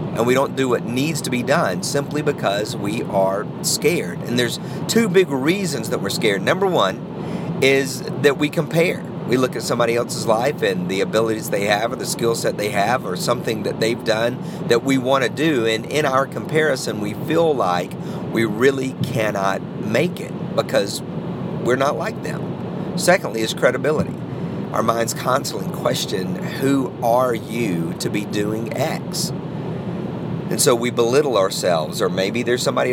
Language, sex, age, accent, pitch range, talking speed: English, male, 50-69, American, 120-180 Hz, 170 wpm